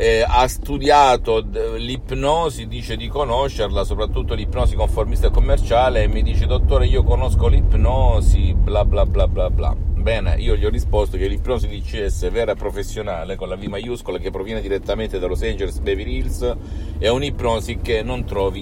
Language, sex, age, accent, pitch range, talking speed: Italian, male, 50-69, native, 85-110 Hz, 170 wpm